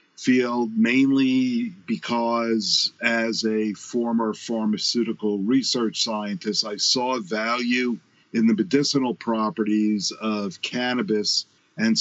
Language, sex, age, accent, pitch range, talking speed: English, male, 50-69, American, 110-140 Hz, 90 wpm